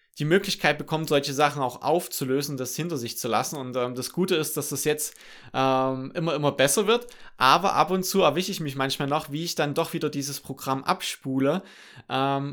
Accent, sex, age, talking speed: German, male, 20-39, 205 wpm